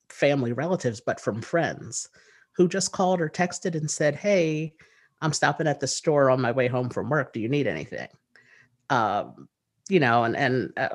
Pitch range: 120-155 Hz